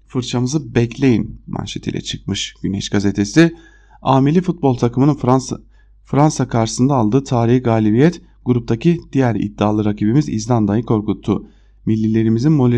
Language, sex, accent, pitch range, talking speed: German, male, Turkish, 115-155 Hz, 110 wpm